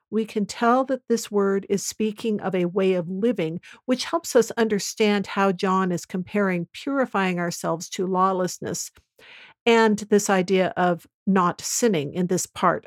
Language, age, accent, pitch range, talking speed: English, 50-69, American, 185-220 Hz, 160 wpm